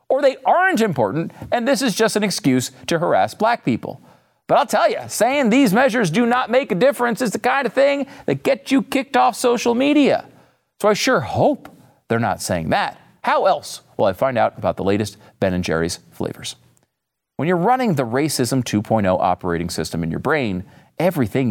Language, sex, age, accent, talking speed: English, male, 40-59, American, 195 wpm